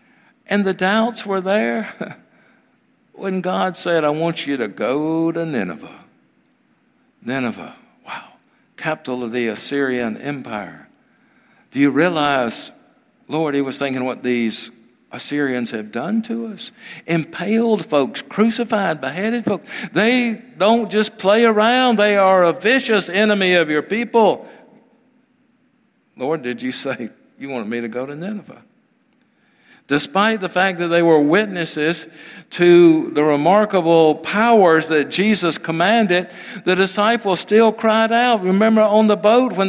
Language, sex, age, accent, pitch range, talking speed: English, male, 60-79, American, 160-225 Hz, 135 wpm